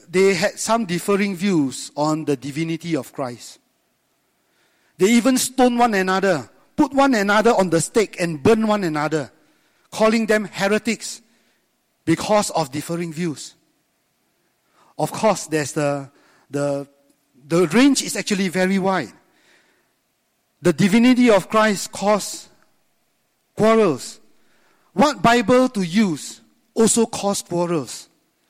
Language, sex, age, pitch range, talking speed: English, male, 50-69, 160-225 Hz, 120 wpm